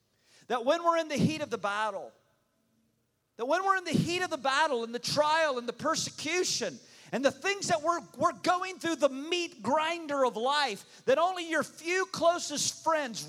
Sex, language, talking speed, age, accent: male, English, 195 wpm, 40-59, American